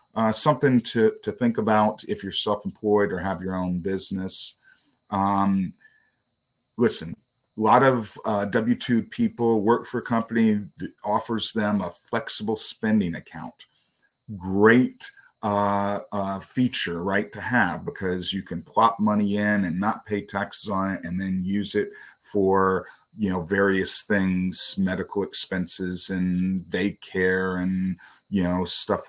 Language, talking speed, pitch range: English, 140 wpm, 95-120 Hz